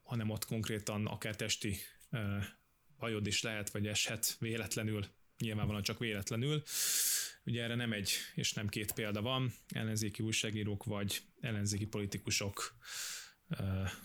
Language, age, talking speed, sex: Hungarian, 20-39, 130 wpm, male